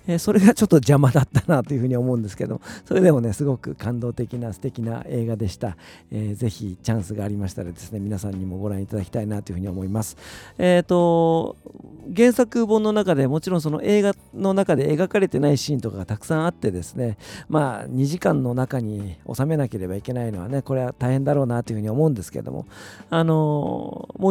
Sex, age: male, 50-69